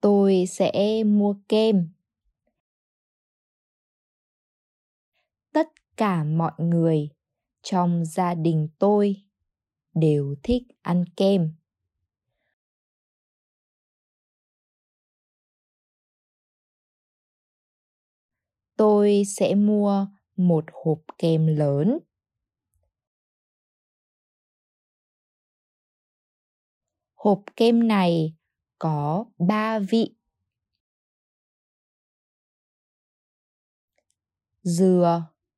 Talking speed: 50 wpm